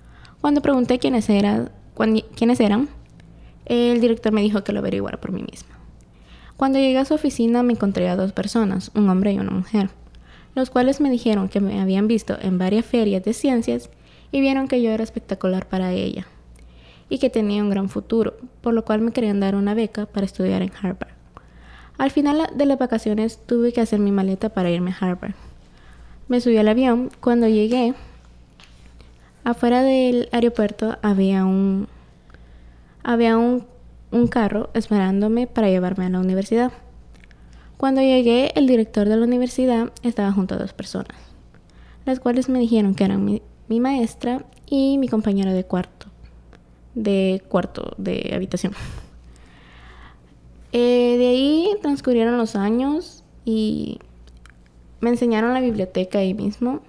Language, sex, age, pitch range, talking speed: Spanish, female, 20-39, 180-240 Hz, 155 wpm